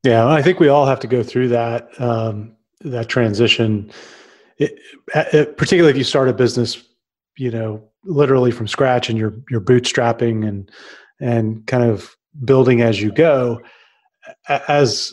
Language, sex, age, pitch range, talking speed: English, male, 30-49, 120-140 Hz, 145 wpm